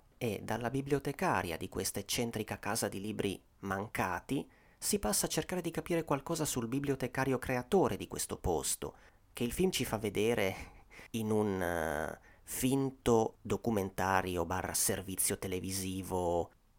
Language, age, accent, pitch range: Italian, 30-49, native, 95-140 Hz